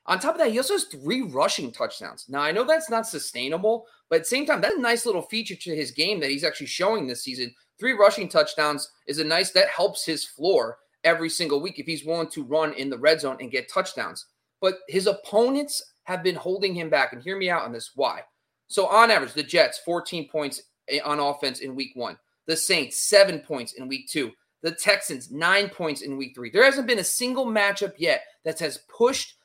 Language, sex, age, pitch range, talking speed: English, male, 30-49, 150-205 Hz, 225 wpm